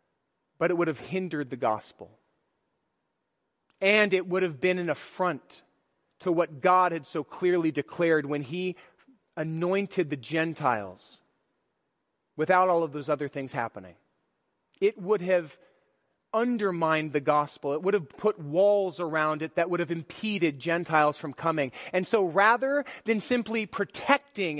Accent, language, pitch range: American, English, 155-215 Hz